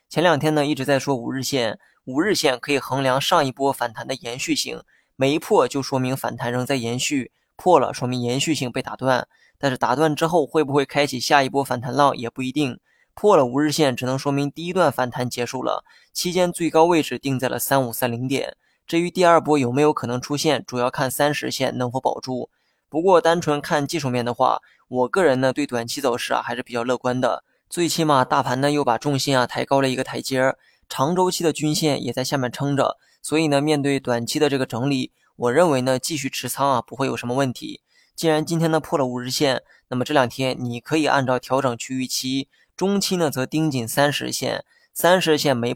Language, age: Chinese, 20-39